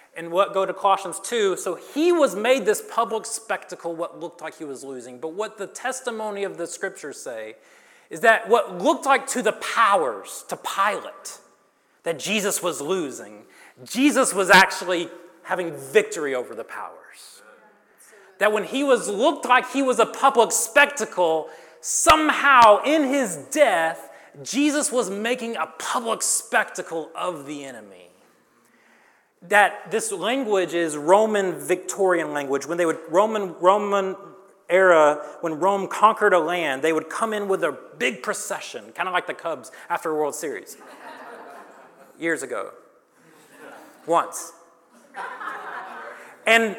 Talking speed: 140 wpm